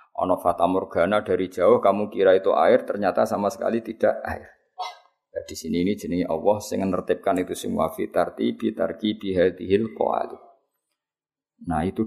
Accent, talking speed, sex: native, 120 wpm, male